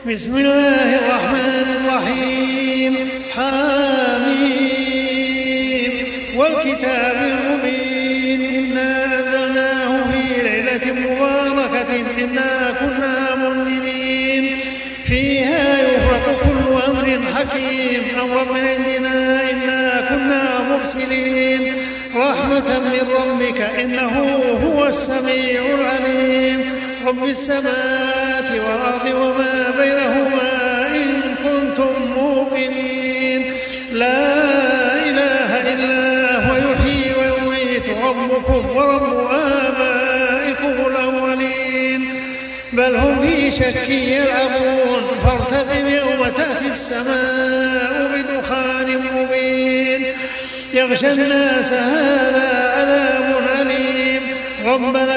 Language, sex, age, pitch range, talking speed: Arabic, male, 40-59, 255-265 Hz, 75 wpm